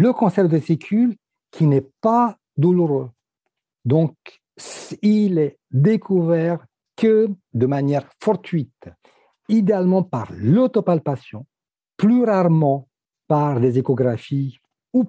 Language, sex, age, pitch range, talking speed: French, male, 60-79, 130-195 Hz, 100 wpm